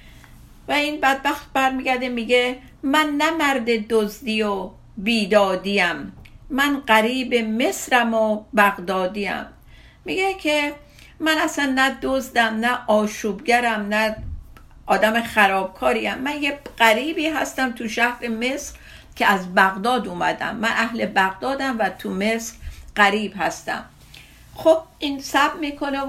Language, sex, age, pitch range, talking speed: Persian, female, 50-69, 215-275 Hz, 115 wpm